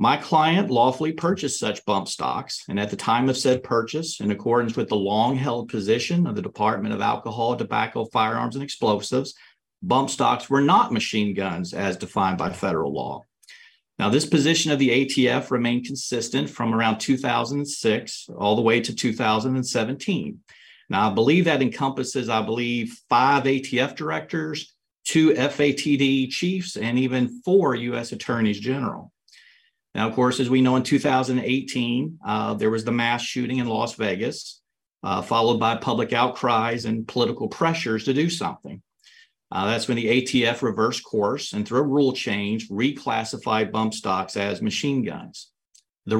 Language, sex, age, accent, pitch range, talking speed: English, male, 50-69, American, 110-145 Hz, 160 wpm